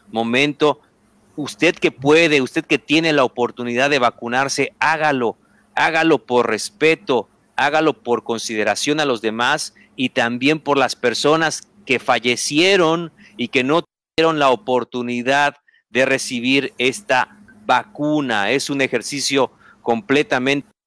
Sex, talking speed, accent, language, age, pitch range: male, 120 wpm, Mexican, Spanish, 50-69, 120-150 Hz